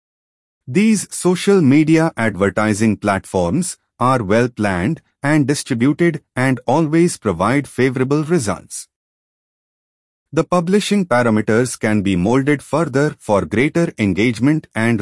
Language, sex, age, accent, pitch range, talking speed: English, male, 30-49, Indian, 105-155 Hz, 100 wpm